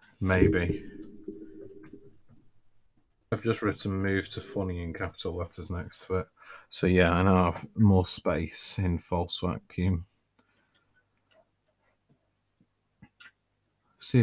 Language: English